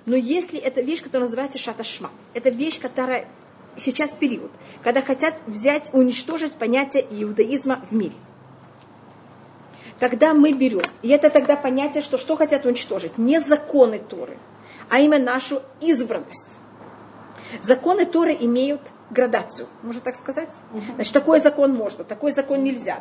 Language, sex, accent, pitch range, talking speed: Russian, female, native, 250-300 Hz, 135 wpm